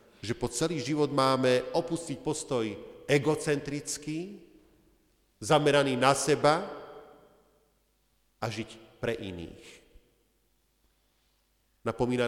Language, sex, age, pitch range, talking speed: Slovak, male, 40-59, 115-165 Hz, 80 wpm